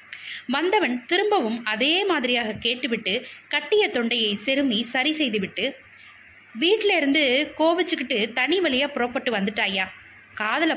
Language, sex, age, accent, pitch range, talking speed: Tamil, female, 20-39, native, 220-310 Hz, 110 wpm